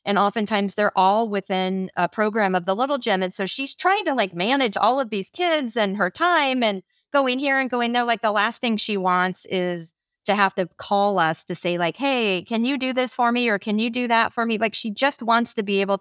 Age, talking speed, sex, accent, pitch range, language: 30-49, 250 wpm, female, American, 160-205 Hz, English